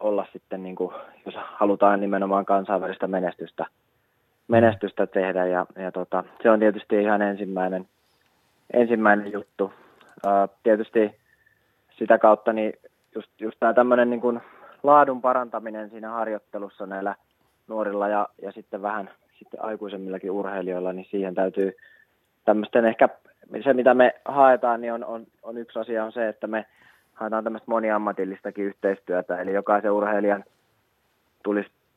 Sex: male